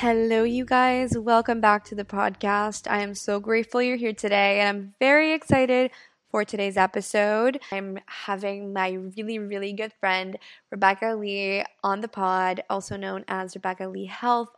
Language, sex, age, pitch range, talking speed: English, female, 20-39, 190-210 Hz, 165 wpm